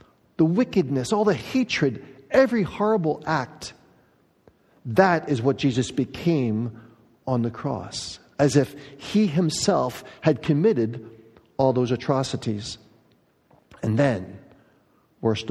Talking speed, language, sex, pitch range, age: 110 wpm, English, male, 115-160 Hz, 50-69